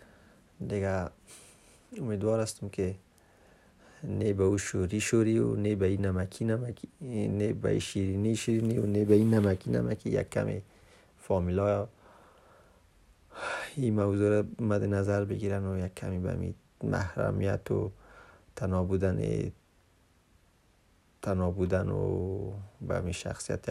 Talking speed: 105 wpm